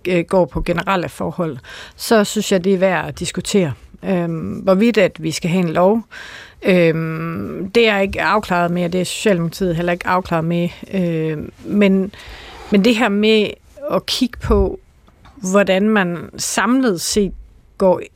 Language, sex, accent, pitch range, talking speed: Danish, female, native, 170-210 Hz, 160 wpm